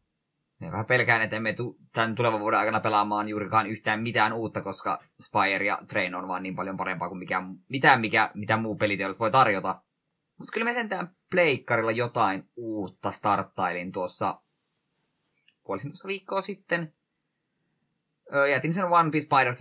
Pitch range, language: 105-140 Hz, Finnish